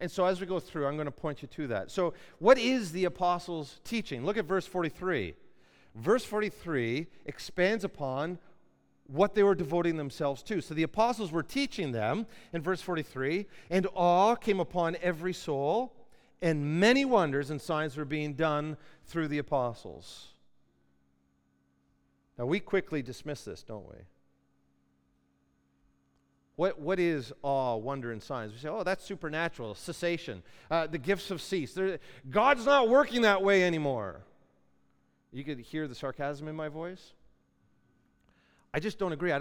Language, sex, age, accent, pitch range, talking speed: English, male, 40-59, American, 120-190 Hz, 160 wpm